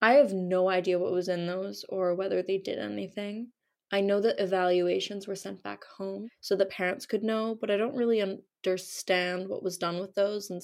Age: 20-39